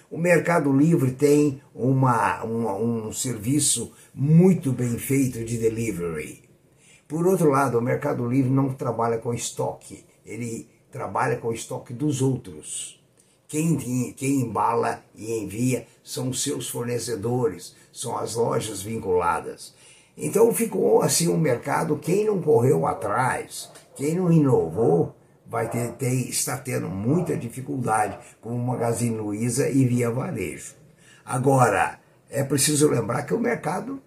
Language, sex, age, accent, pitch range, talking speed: Portuguese, male, 60-79, Brazilian, 120-155 Hz, 125 wpm